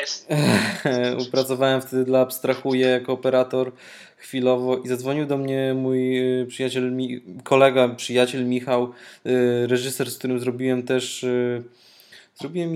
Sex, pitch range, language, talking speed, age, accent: male, 120-135 Hz, Polish, 105 wpm, 20-39, native